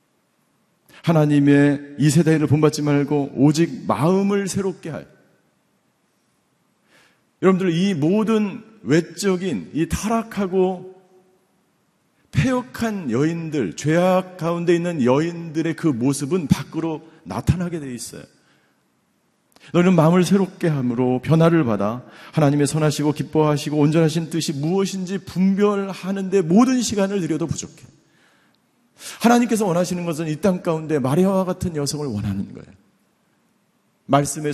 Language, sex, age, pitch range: Korean, male, 40-59, 155-190 Hz